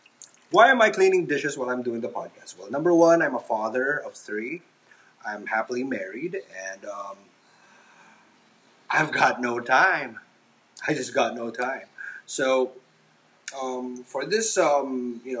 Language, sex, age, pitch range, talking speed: English, male, 30-49, 115-140 Hz, 150 wpm